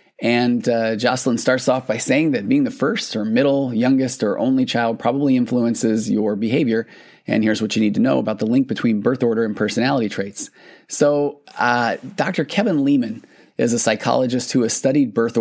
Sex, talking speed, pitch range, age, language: male, 190 wpm, 110-130 Hz, 30-49, English